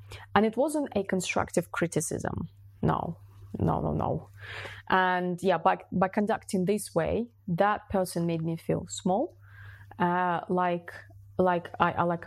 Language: English